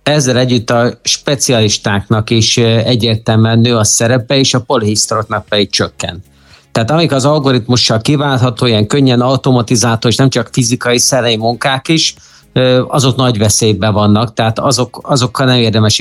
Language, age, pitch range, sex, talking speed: Hungarian, 50-69, 110-130 Hz, male, 140 wpm